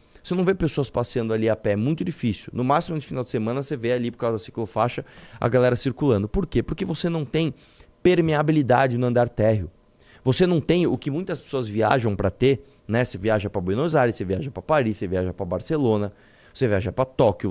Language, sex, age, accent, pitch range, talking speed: Portuguese, male, 20-39, Brazilian, 110-160 Hz, 225 wpm